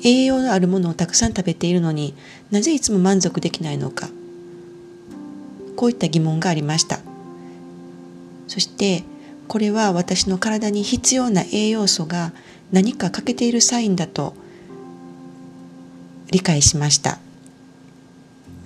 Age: 40-59